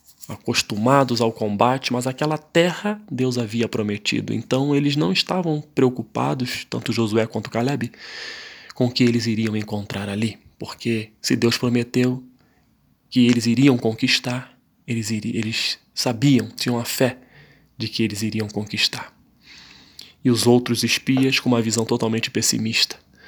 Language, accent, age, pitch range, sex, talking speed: Portuguese, Brazilian, 20-39, 115-135 Hz, male, 135 wpm